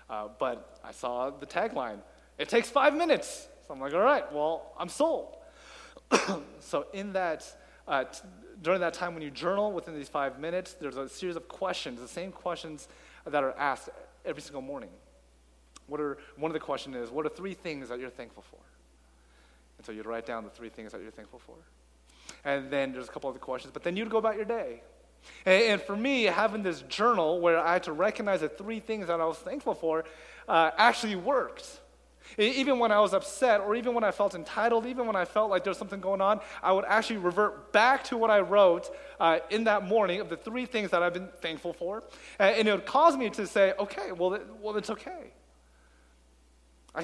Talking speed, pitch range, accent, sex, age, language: 215 wpm, 145-215 Hz, American, male, 30-49, English